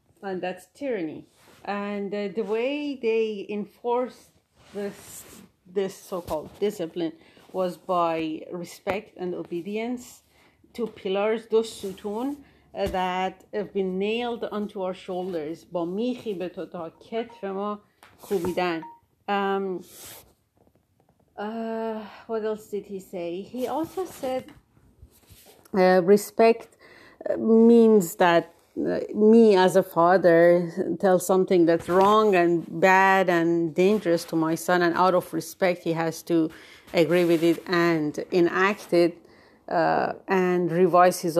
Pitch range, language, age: 170-210 Hz, Persian, 40-59